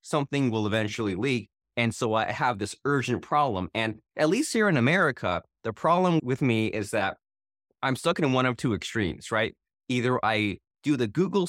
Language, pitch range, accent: English, 110-140 Hz, American